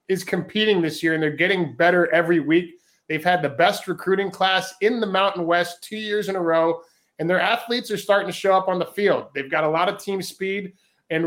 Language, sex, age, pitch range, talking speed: English, male, 30-49, 165-195 Hz, 235 wpm